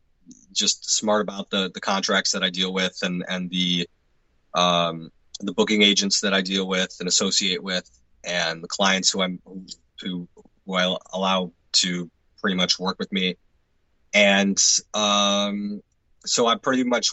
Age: 30-49